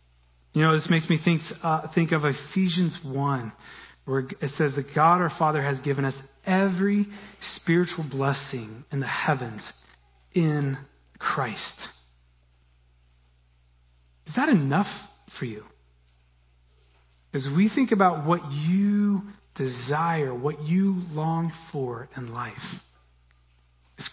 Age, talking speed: 40-59, 120 wpm